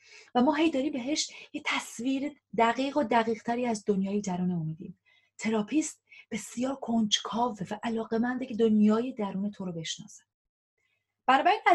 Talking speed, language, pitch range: 140 wpm, Persian, 200-290 Hz